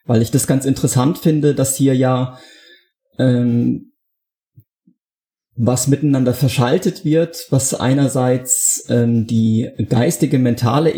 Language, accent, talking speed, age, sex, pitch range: German, German, 110 wpm, 30-49, male, 120-145 Hz